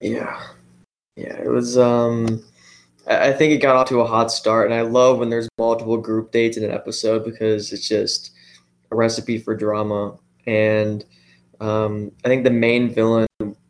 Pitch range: 110-120 Hz